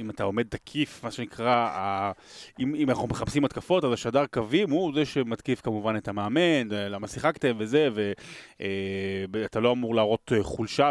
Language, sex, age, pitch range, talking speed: Hebrew, male, 30-49, 105-145 Hz, 155 wpm